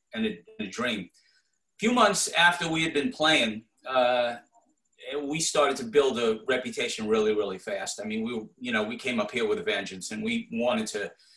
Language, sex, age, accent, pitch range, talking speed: English, male, 40-59, American, 150-225 Hz, 200 wpm